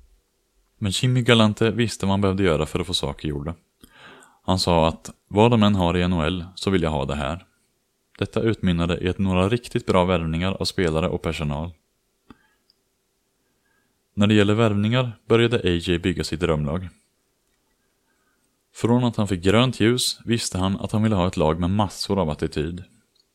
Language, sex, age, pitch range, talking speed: Swedish, male, 30-49, 85-110 Hz, 165 wpm